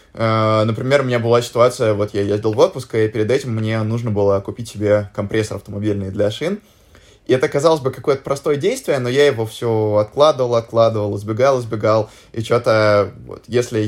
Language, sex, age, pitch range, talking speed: Russian, male, 20-39, 105-125 Hz, 175 wpm